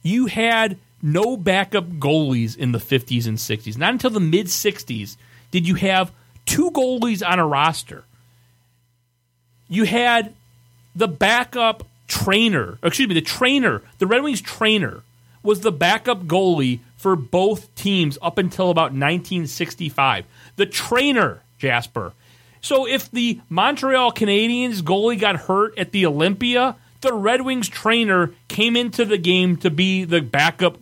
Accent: American